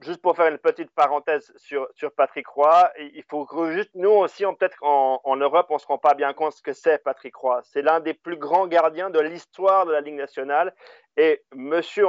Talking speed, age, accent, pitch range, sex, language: 225 wpm, 40-59, French, 140-185 Hz, male, French